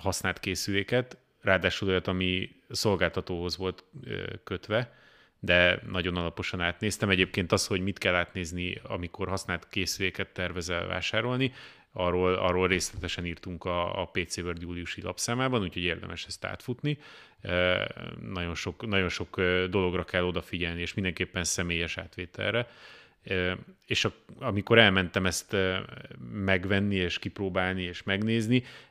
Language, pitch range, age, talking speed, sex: Hungarian, 90-105 Hz, 30-49, 120 wpm, male